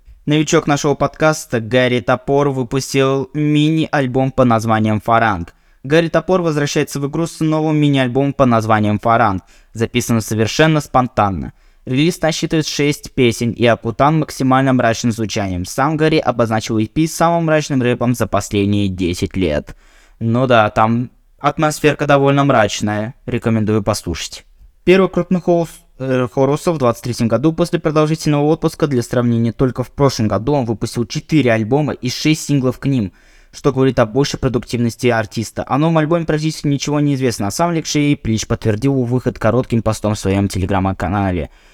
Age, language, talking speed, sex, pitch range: 20-39, Russian, 150 wpm, male, 110-145 Hz